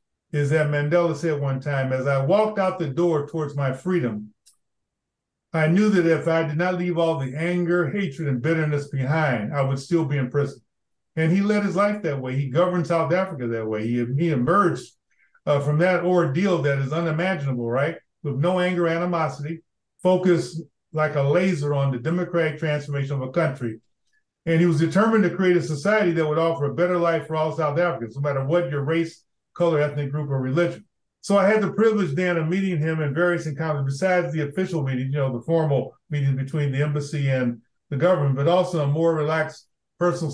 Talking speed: 200 wpm